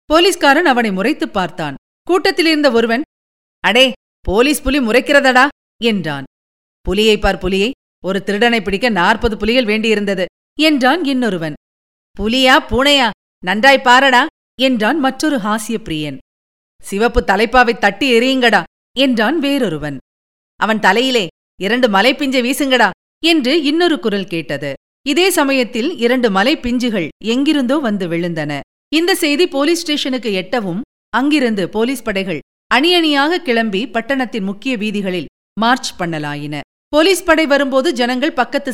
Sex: female